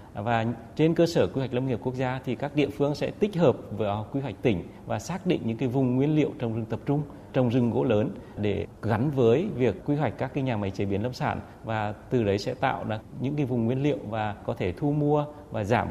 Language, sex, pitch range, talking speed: Vietnamese, male, 110-140 Hz, 260 wpm